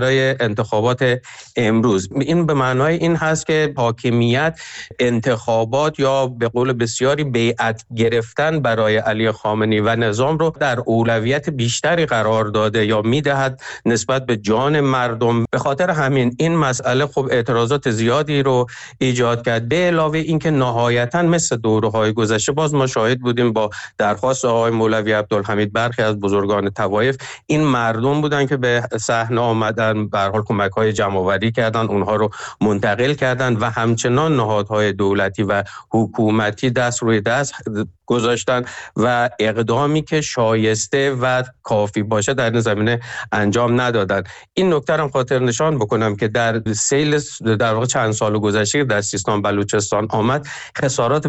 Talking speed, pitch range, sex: 150 wpm, 110-135 Hz, male